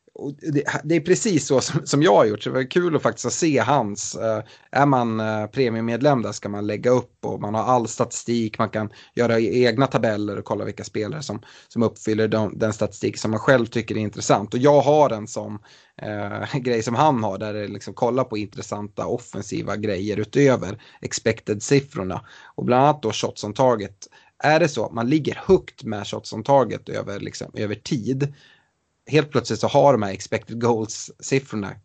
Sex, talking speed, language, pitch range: male, 200 wpm, Swedish, 105-135 Hz